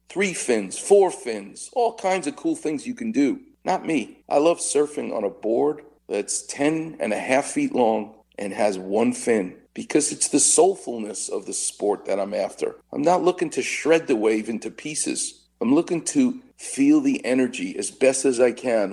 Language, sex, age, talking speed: English, male, 40-59, 195 wpm